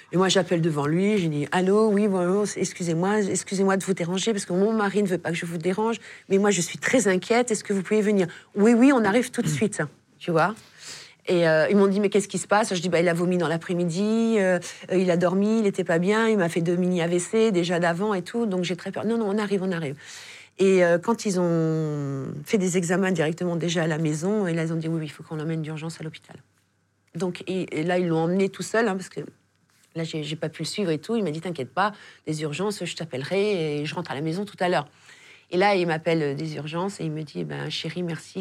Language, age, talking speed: French, 40-59, 275 wpm